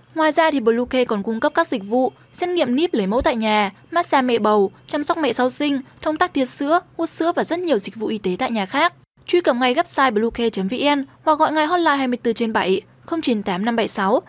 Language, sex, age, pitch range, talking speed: Vietnamese, female, 10-29, 225-290 Hz, 235 wpm